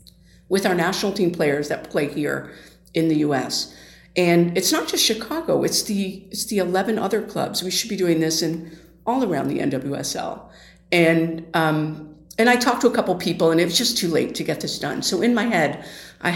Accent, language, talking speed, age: American, English, 210 wpm, 50-69